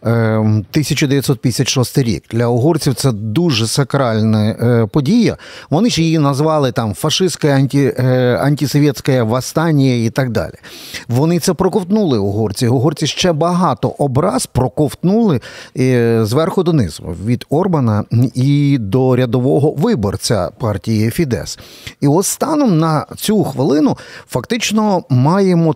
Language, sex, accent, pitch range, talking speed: Ukrainian, male, native, 120-155 Hz, 105 wpm